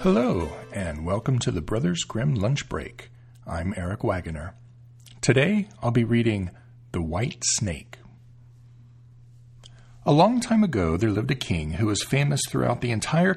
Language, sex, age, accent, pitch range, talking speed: English, male, 40-59, American, 105-135 Hz, 150 wpm